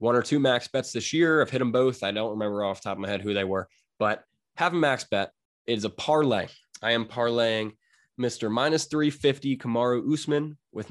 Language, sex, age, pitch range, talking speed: English, male, 20-39, 100-120 Hz, 225 wpm